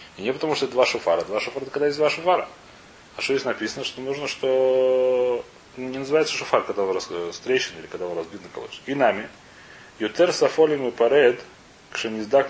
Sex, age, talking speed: male, 30-49, 180 wpm